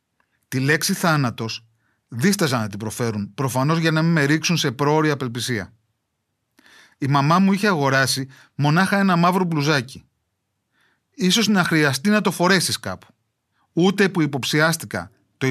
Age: 30-49